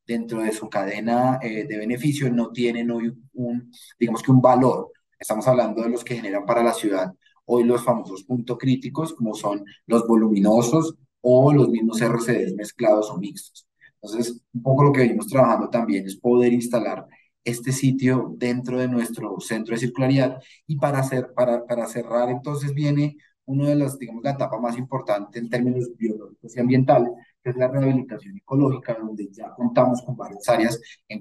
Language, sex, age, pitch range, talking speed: Spanish, male, 30-49, 115-130 Hz, 175 wpm